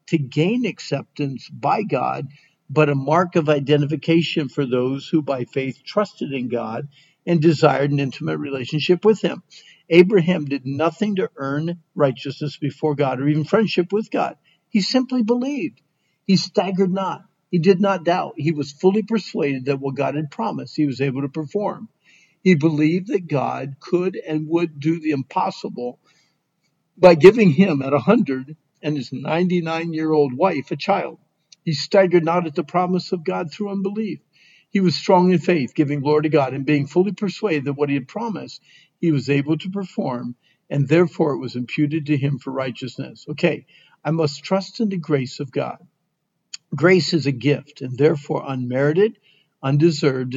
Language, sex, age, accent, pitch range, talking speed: English, male, 50-69, American, 145-180 Hz, 170 wpm